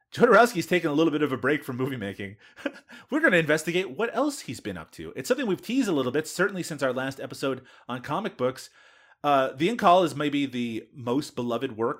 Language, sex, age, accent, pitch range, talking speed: English, male, 30-49, American, 120-160 Hz, 220 wpm